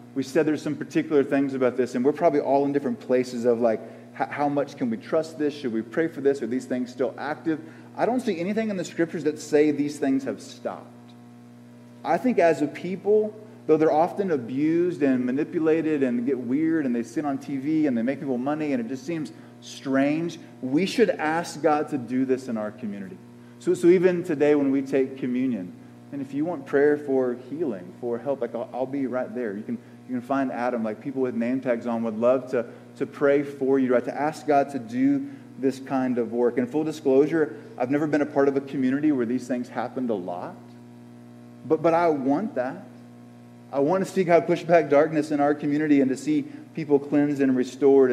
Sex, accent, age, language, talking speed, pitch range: male, American, 30-49, English, 220 wpm, 120-155 Hz